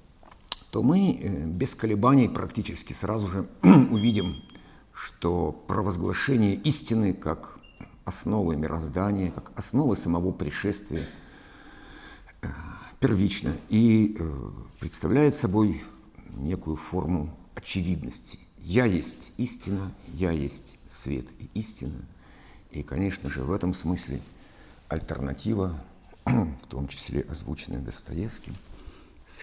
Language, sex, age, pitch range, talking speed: Russian, male, 60-79, 80-110 Hz, 105 wpm